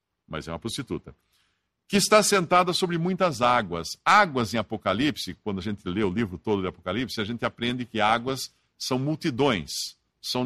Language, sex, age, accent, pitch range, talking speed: English, male, 60-79, Brazilian, 110-155 Hz, 170 wpm